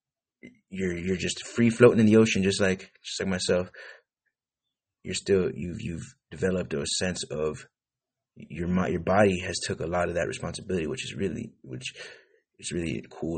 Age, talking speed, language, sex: 30-49, 170 wpm, English, male